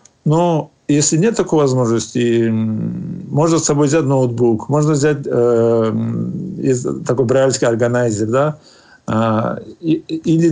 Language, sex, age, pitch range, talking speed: Russian, male, 50-69, 125-155 Hz, 115 wpm